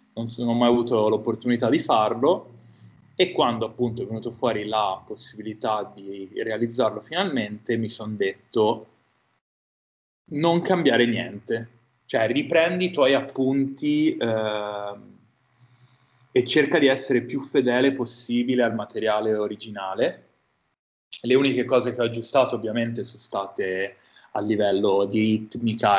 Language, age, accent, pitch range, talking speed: Italian, 20-39, native, 105-125 Hz, 120 wpm